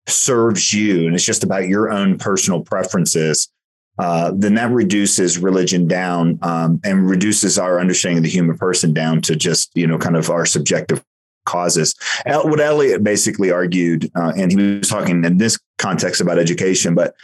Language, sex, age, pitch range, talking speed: English, male, 30-49, 90-120 Hz, 175 wpm